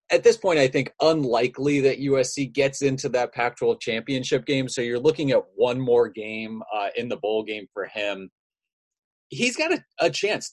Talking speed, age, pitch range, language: 190 wpm, 30-49, 115-150 Hz, English